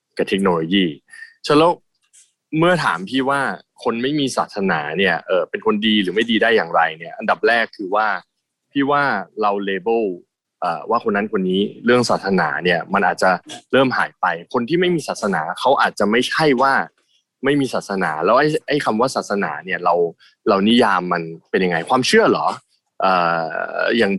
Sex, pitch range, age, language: male, 100-165 Hz, 20-39, Thai